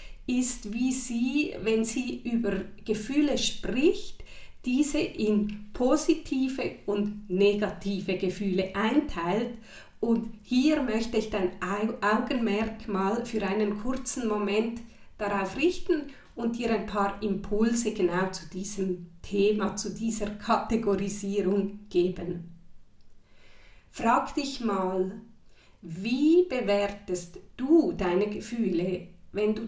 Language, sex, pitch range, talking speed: German, female, 195-235 Hz, 100 wpm